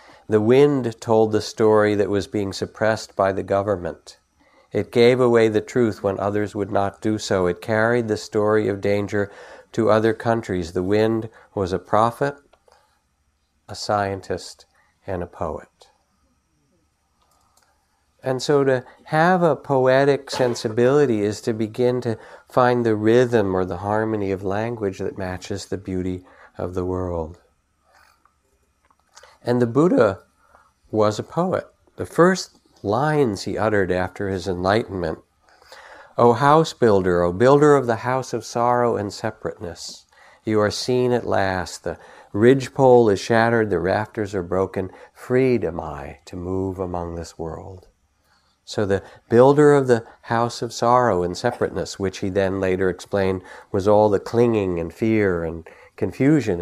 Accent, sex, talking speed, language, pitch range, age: American, male, 145 wpm, English, 95-120 Hz, 50-69